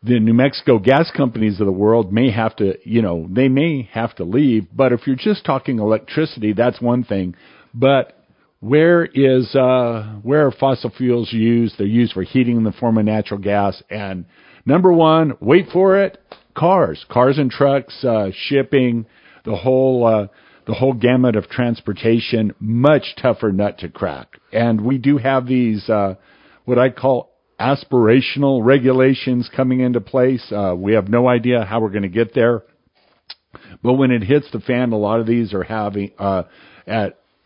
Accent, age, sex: American, 50-69, male